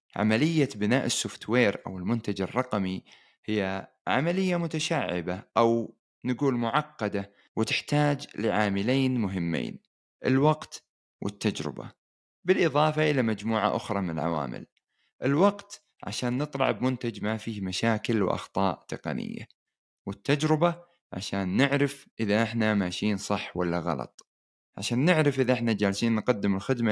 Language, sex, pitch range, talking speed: Arabic, male, 95-120 Hz, 105 wpm